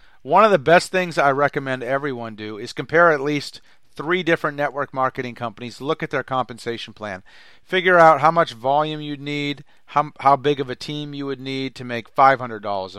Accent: American